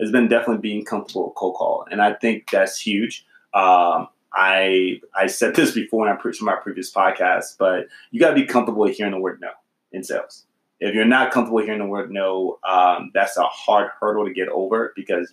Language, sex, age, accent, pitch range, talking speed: English, male, 20-39, American, 95-115 Hz, 215 wpm